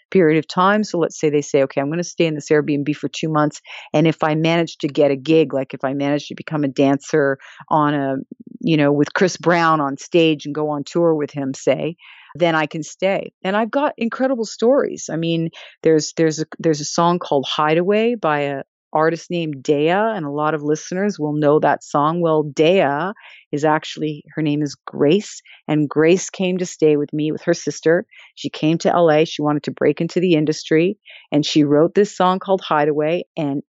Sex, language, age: female, English, 40-59